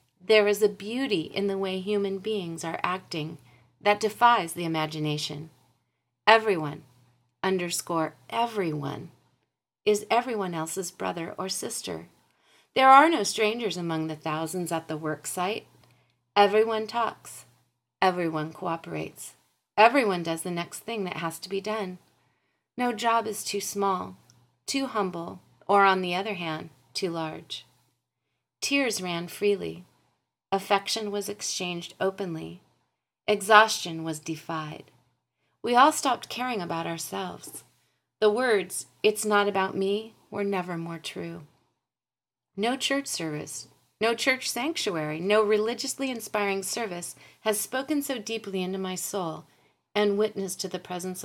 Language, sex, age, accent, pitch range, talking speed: English, female, 30-49, American, 165-215 Hz, 130 wpm